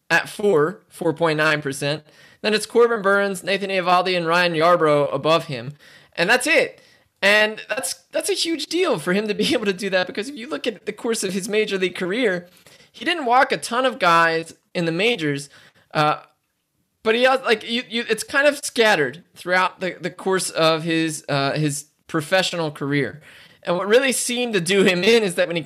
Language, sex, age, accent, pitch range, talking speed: English, male, 20-39, American, 155-205 Hz, 200 wpm